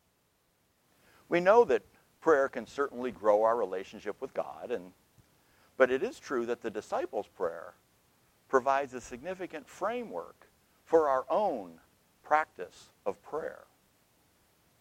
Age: 60-79